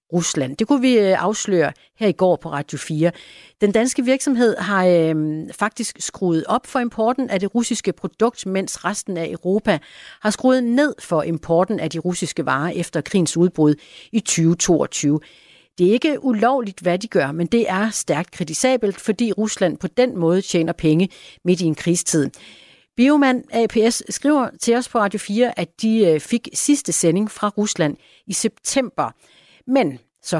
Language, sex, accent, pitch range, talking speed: Danish, female, native, 175-240 Hz, 170 wpm